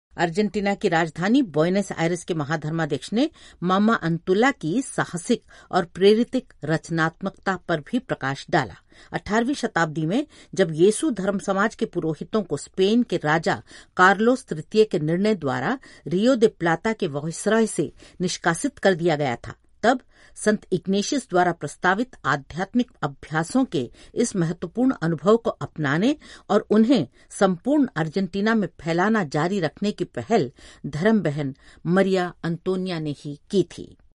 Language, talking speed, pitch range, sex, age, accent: Hindi, 140 wpm, 160-215 Hz, female, 50-69, native